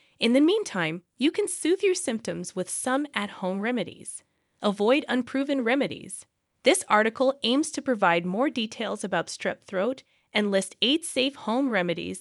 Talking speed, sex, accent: 150 wpm, female, American